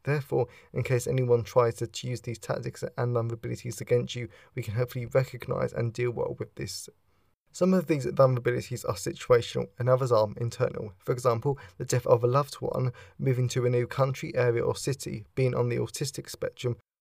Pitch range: 120-135 Hz